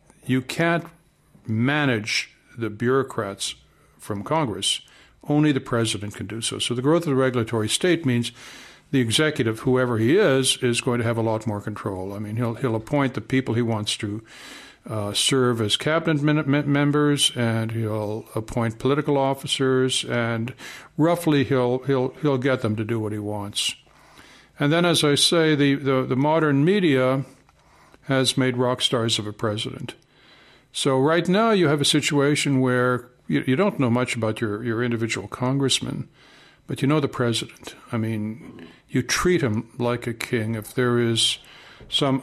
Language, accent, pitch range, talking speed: English, American, 115-140 Hz, 170 wpm